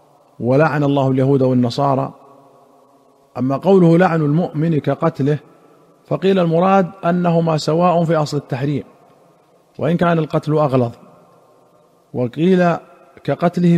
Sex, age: male, 40-59